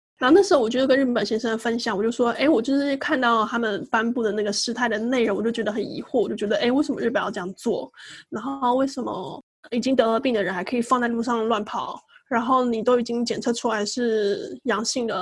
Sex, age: female, 10-29